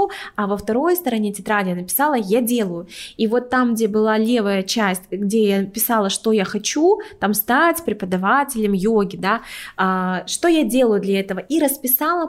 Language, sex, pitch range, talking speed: Russian, female, 210-260 Hz, 165 wpm